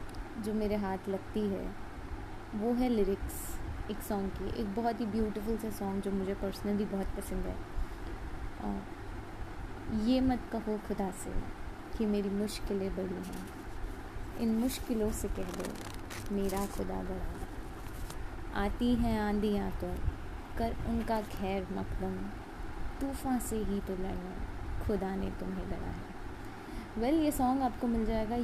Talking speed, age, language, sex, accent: 140 wpm, 20-39, Hindi, female, native